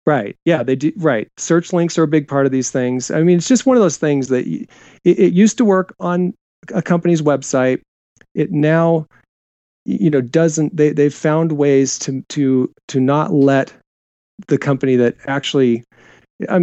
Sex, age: male, 40-59